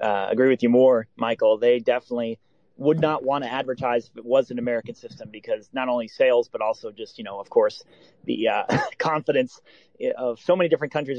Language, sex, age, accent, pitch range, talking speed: English, male, 30-49, American, 120-185 Hz, 205 wpm